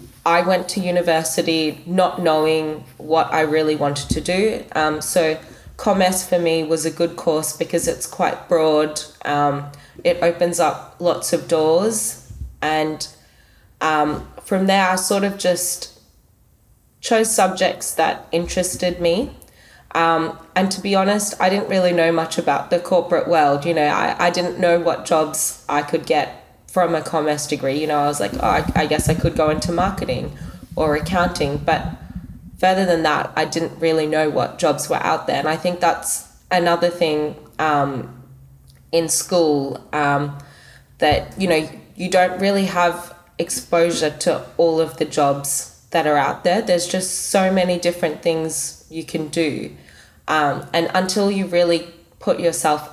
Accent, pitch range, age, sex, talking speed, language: Australian, 150-180 Hz, 20-39, female, 165 wpm, English